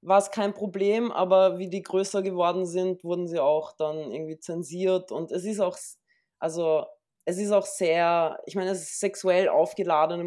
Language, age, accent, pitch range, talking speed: German, 20-39, German, 170-205 Hz, 180 wpm